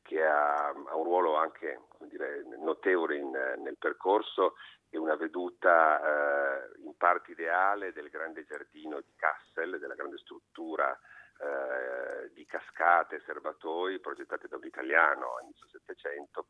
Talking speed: 140 wpm